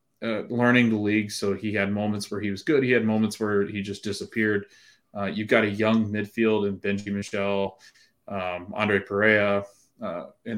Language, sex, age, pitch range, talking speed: English, male, 20-39, 100-115 Hz, 185 wpm